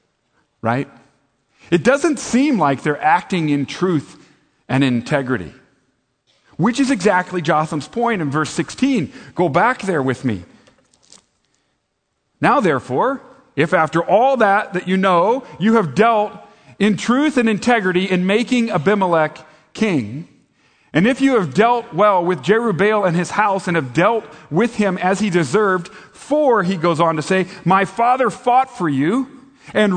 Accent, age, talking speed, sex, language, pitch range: American, 40-59, 150 wpm, male, English, 155-235 Hz